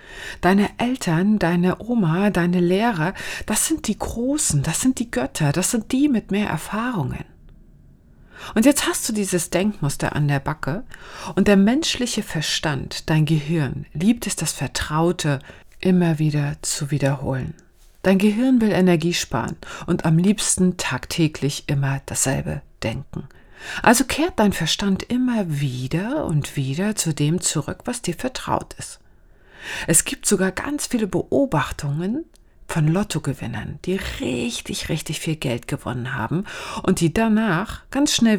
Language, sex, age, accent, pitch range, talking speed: German, female, 40-59, German, 150-210 Hz, 140 wpm